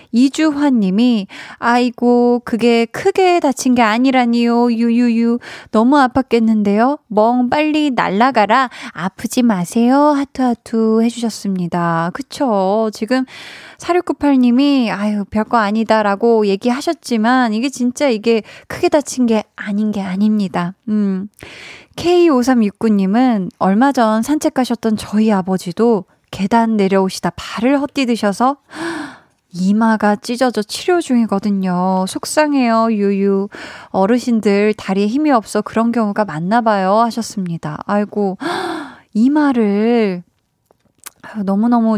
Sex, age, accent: female, 20-39, native